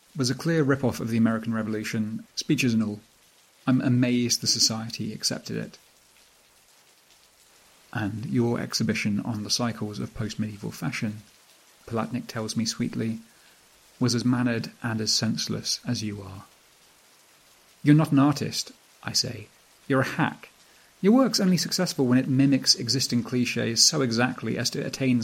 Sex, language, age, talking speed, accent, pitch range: male, English, 30-49, 145 wpm, British, 110-125 Hz